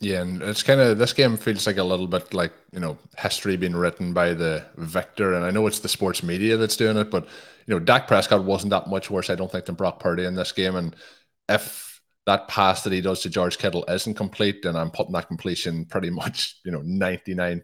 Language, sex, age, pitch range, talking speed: English, male, 20-39, 85-95 Hz, 245 wpm